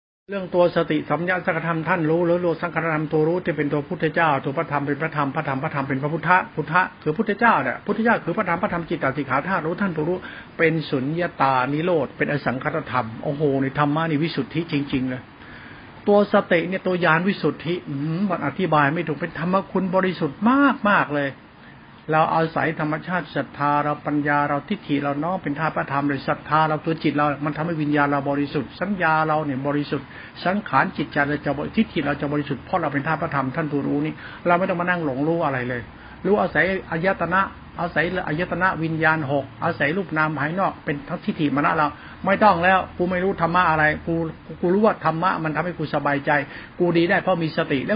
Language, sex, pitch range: Thai, male, 150-185 Hz